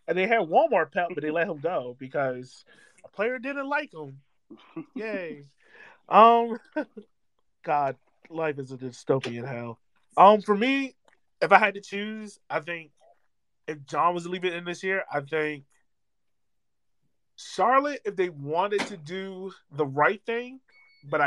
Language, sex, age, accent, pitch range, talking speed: English, male, 30-49, American, 145-200 Hz, 155 wpm